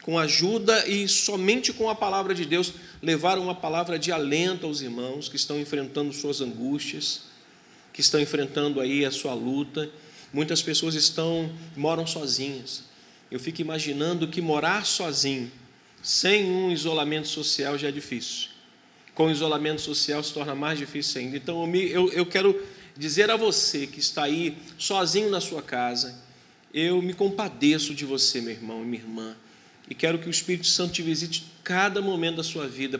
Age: 40-59